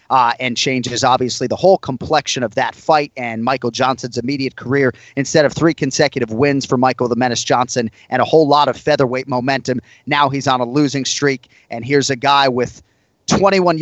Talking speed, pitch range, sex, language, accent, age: 190 wpm, 125-160 Hz, male, English, American, 30-49